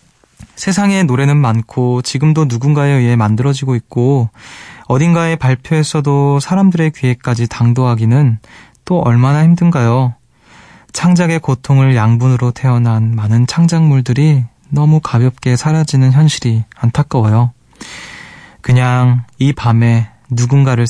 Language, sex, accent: Korean, male, native